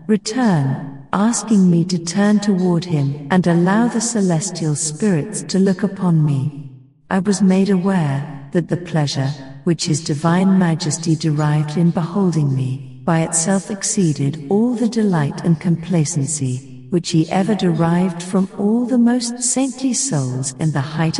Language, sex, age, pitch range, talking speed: English, female, 50-69, 150-200 Hz, 145 wpm